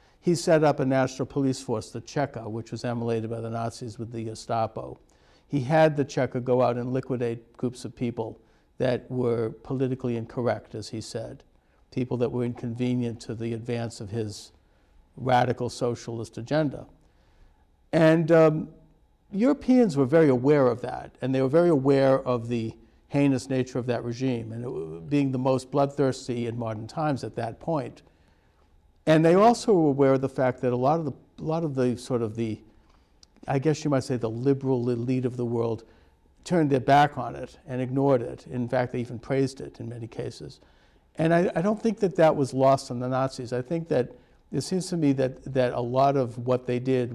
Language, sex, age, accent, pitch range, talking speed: English, male, 60-79, American, 115-140 Hz, 195 wpm